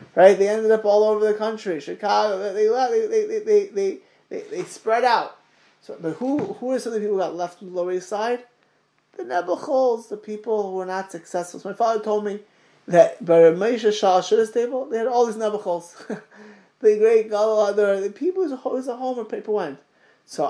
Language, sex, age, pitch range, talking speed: English, male, 20-39, 185-265 Hz, 210 wpm